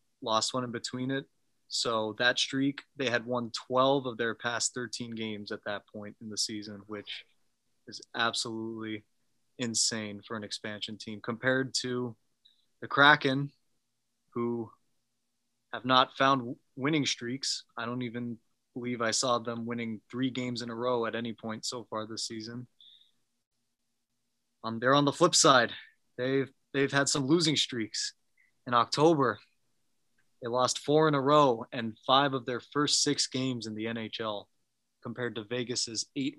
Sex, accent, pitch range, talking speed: male, American, 110-130 Hz, 160 wpm